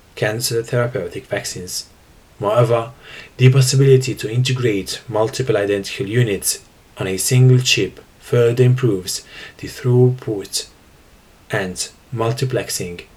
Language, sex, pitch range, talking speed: English, male, 105-130 Hz, 95 wpm